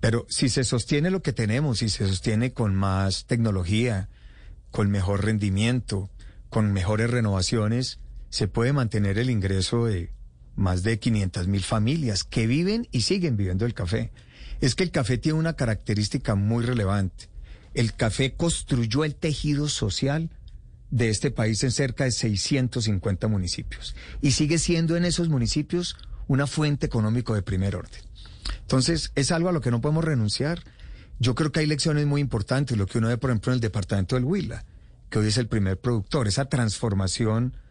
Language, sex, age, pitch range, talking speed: Spanish, male, 40-59, 105-135 Hz, 170 wpm